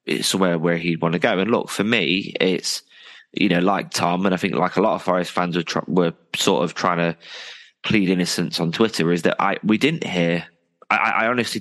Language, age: English, 20-39